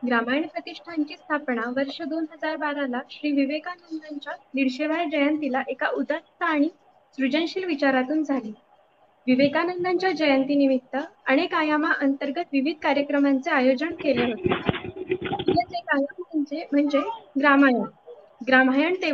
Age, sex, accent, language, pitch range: 20-39, female, native, Marathi, 265-320 Hz